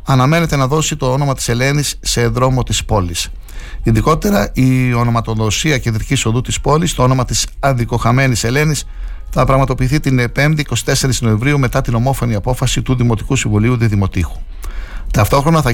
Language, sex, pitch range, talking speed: Greek, male, 105-130 Hz, 150 wpm